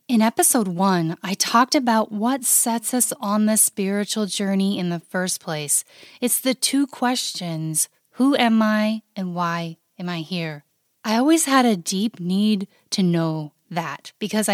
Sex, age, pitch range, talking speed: female, 30-49, 185-245 Hz, 160 wpm